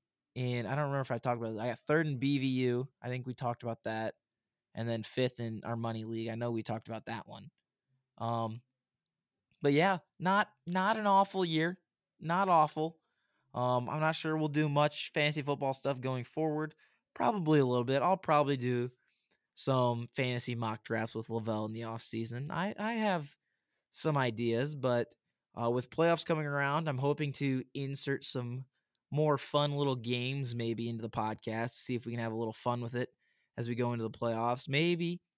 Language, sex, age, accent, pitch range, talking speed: English, male, 20-39, American, 115-150 Hz, 190 wpm